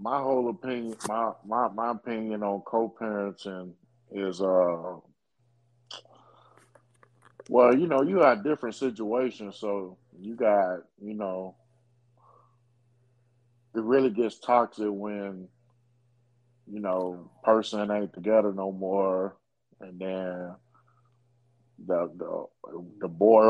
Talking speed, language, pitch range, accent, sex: 105 wpm, English, 95-120 Hz, American, male